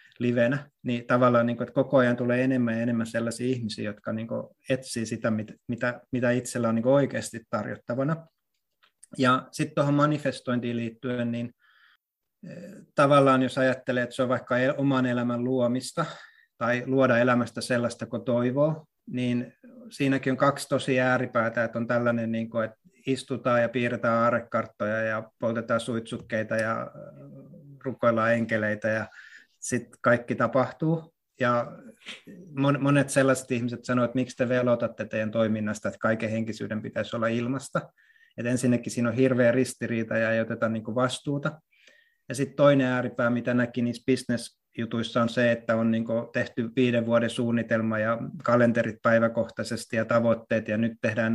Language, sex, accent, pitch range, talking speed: Finnish, male, native, 115-130 Hz, 135 wpm